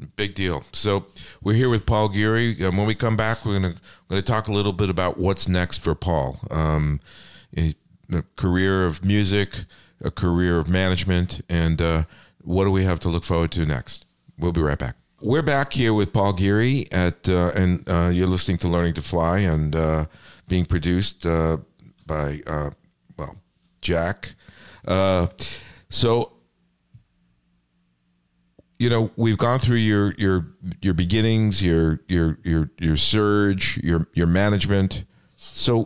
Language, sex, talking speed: English, male, 160 wpm